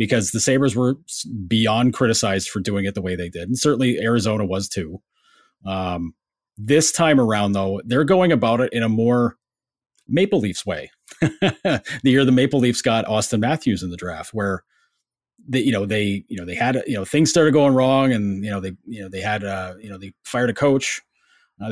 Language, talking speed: English, 205 wpm